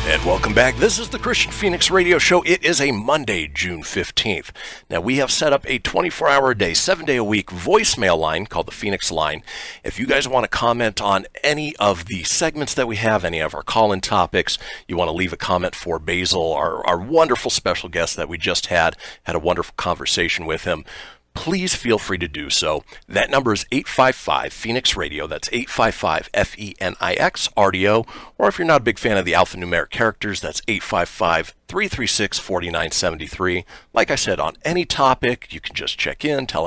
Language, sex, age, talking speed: English, male, 40-59, 195 wpm